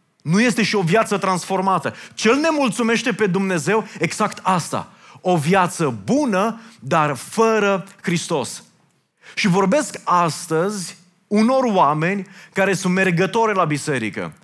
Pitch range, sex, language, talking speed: 130-190 Hz, male, Romanian, 120 wpm